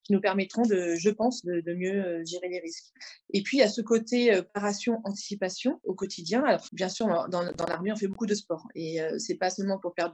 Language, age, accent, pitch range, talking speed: French, 20-39, French, 180-225 Hz, 225 wpm